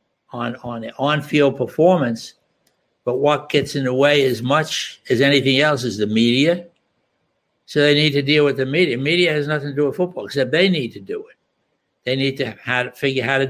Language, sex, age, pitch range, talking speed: English, male, 60-79, 120-155 Hz, 205 wpm